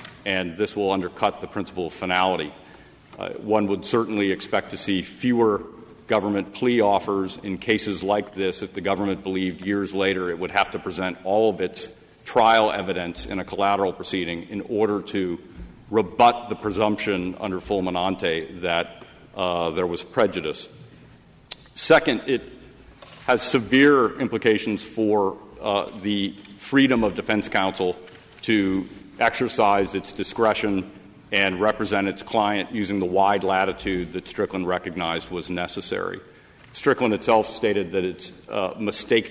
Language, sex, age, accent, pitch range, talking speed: English, male, 40-59, American, 95-110 Hz, 140 wpm